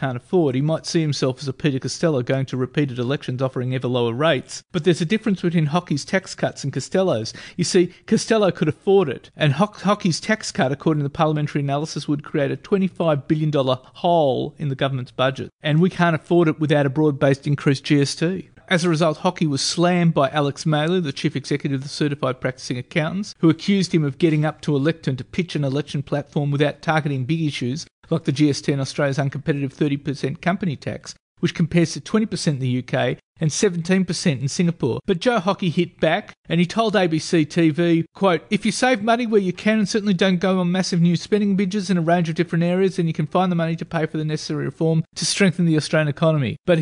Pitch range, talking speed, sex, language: 145-180 Hz, 215 wpm, male, English